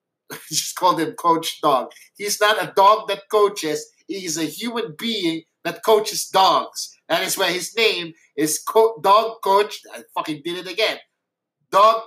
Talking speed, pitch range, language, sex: 170 wpm, 155-205 Hz, English, male